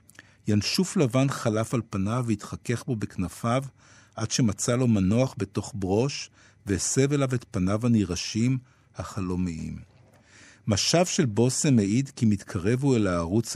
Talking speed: 130 wpm